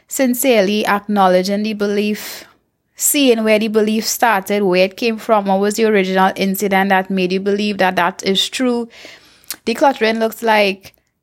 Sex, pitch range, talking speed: female, 195-230 Hz, 155 wpm